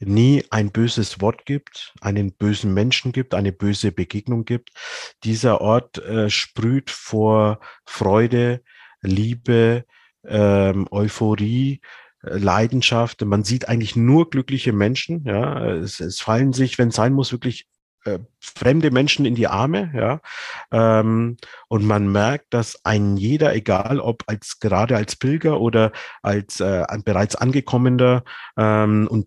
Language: German